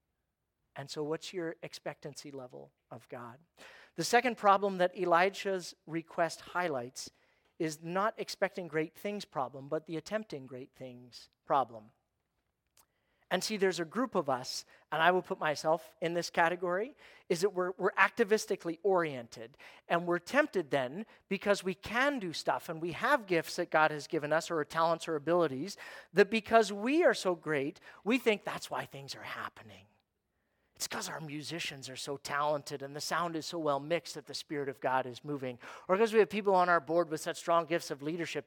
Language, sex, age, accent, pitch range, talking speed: English, male, 40-59, American, 145-195 Hz, 185 wpm